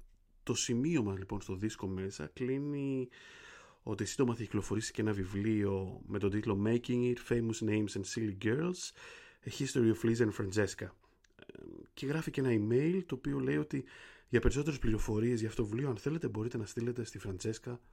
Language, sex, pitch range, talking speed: Greek, male, 100-125 Hz, 175 wpm